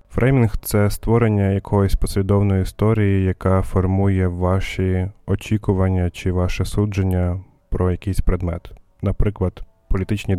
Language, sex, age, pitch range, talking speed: Ukrainian, male, 20-39, 95-105 Hz, 110 wpm